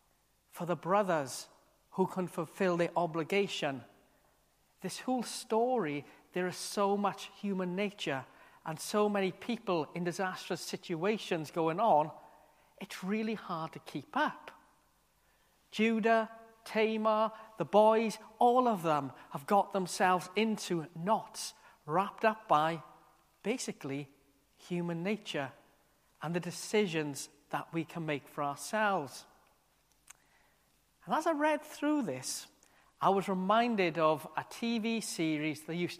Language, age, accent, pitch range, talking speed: English, 40-59, British, 165-215 Hz, 125 wpm